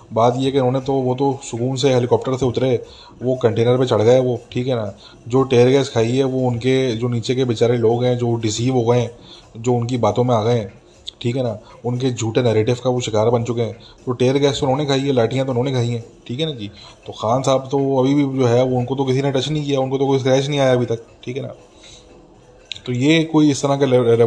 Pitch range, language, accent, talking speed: 115-130 Hz, English, Indian, 160 wpm